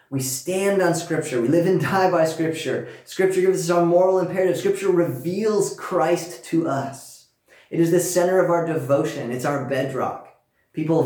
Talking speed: 175 wpm